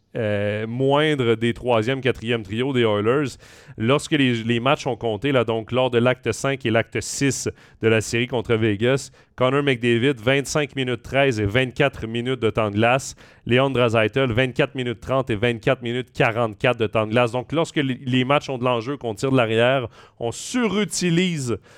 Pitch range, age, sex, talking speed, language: 115-135 Hz, 30-49, male, 185 wpm, French